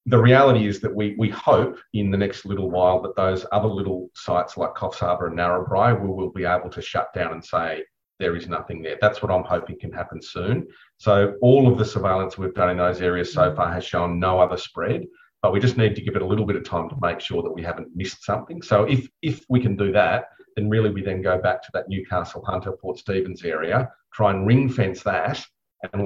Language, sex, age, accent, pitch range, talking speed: English, male, 40-59, Australian, 90-110 Hz, 240 wpm